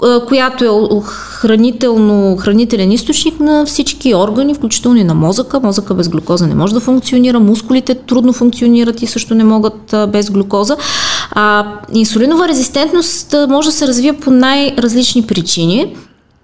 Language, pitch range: Bulgarian, 195-250 Hz